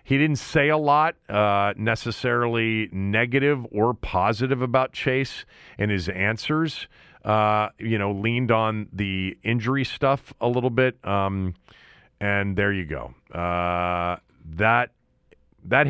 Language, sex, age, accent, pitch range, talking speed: English, male, 40-59, American, 90-130 Hz, 130 wpm